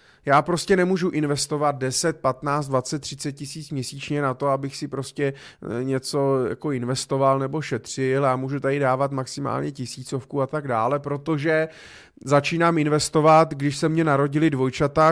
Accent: native